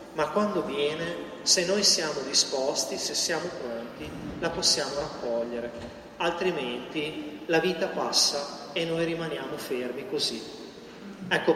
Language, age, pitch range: Italian, 40-59, 150-180 Hz